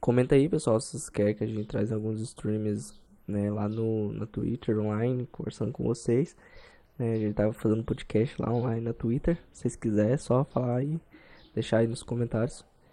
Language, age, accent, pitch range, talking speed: Portuguese, 10-29, Brazilian, 110-130 Hz, 200 wpm